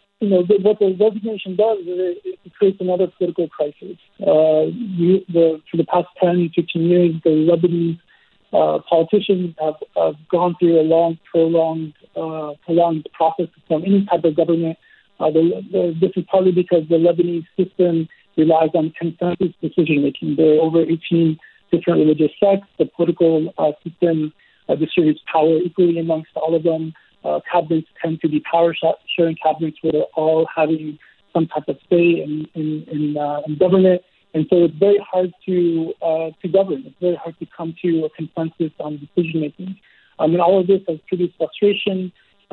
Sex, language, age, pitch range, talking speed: male, English, 50-69, 160-180 Hz, 175 wpm